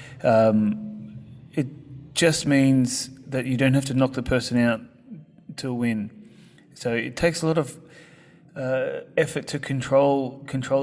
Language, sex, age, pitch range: English, male, 30-49, 125-140 Hz